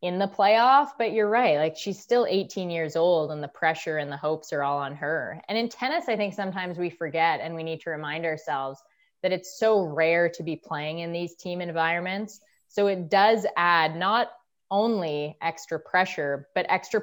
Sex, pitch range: female, 150-185 Hz